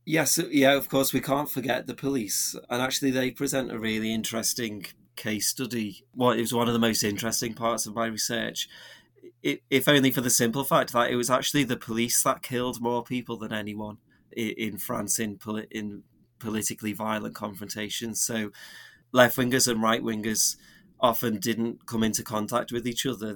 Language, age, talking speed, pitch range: English, 30-49, 180 wpm, 110-130 Hz